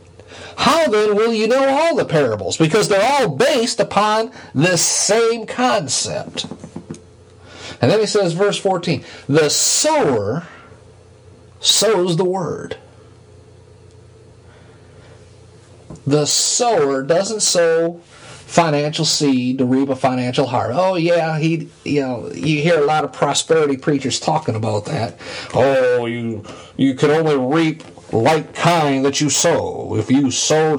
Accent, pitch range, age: American, 110-170 Hz, 40-59